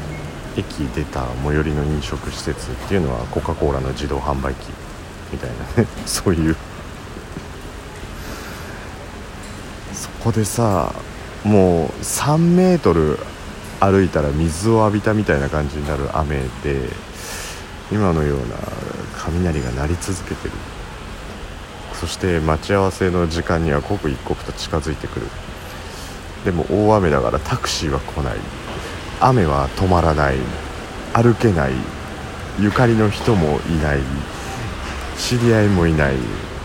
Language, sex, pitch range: Japanese, male, 75-100 Hz